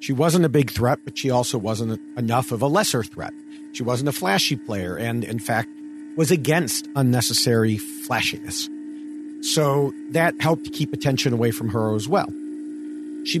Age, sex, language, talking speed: 50-69, male, English, 165 wpm